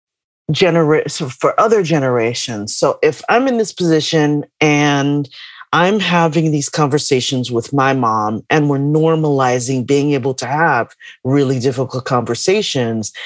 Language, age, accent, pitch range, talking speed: English, 40-59, American, 135-200 Hz, 125 wpm